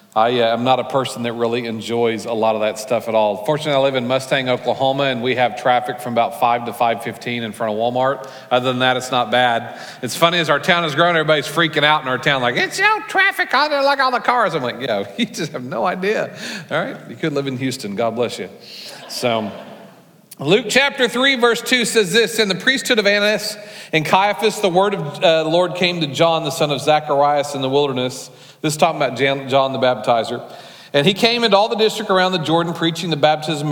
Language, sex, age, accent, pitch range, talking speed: English, male, 40-59, American, 130-175 Hz, 240 wpm